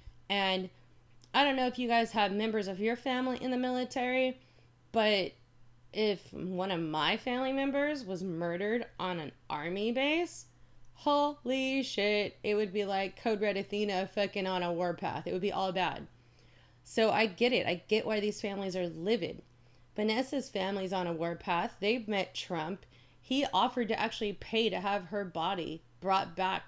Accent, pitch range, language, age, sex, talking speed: American, 180-240 Hz, English, 30-49, female, 170 wpm